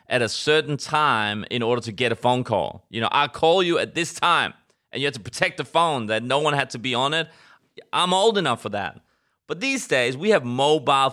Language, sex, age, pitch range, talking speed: English, male, 30-49, 110-145 Hz, 245 wpm